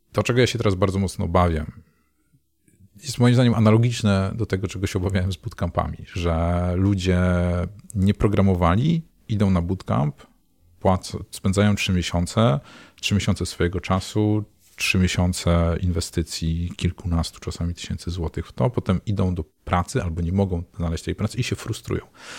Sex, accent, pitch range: male, native, 85-100 Hz